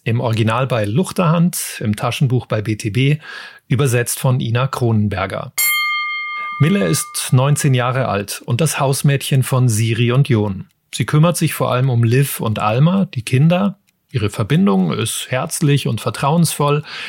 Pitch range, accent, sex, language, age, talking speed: 120-150 Hz, German, male, German, 30-49, 145 wpm